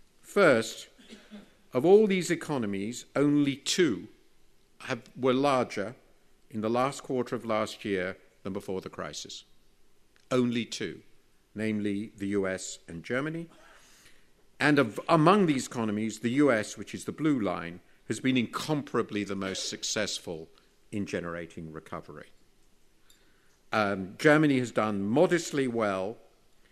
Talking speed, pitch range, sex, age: 120 wpm, 100-140 Hz, male, 50-69